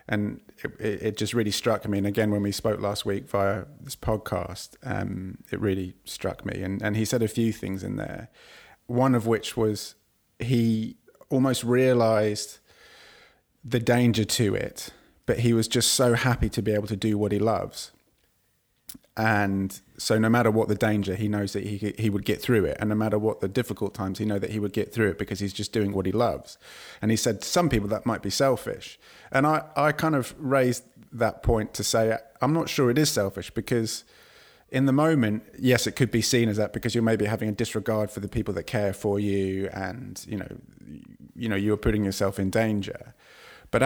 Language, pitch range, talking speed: English, 105-120 Hz, 210 wpm